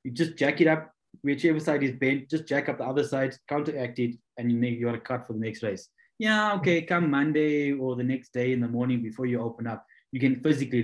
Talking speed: 245 wpm